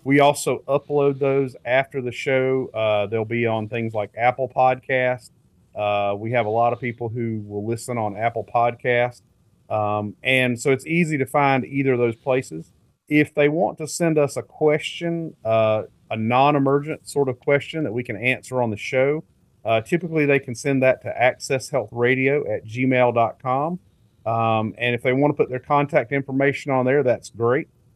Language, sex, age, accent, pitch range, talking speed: English, male, 40-59, American, 115-135 Hz, 185 wpm